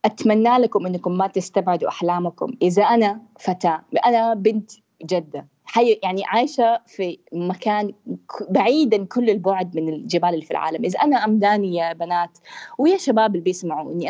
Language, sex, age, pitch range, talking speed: Arabic, female, 20-39, 175-235 Hz, 140 wpm